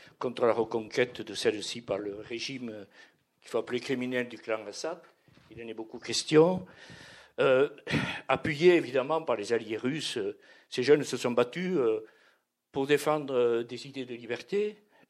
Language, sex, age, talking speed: French, male, 60-79, 150 wpm